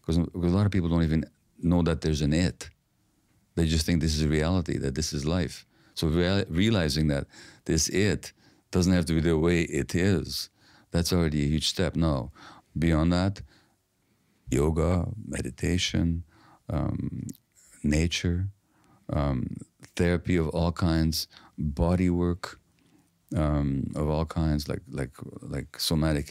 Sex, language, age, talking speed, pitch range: male, English, 50-69, 145 wpm, 75-85 Hz